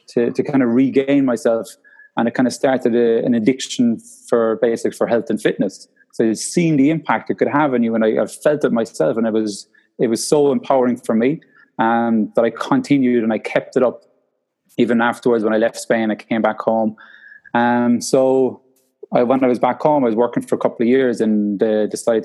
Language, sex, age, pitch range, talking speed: English, male, 20-39, 110-130 Hz, 225 wpm